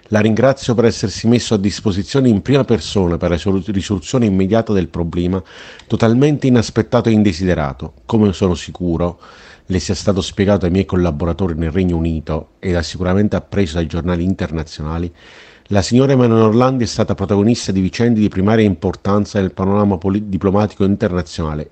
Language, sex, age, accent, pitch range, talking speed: Italian, male, 40-59, native, 85-105 Hz, 155 wpm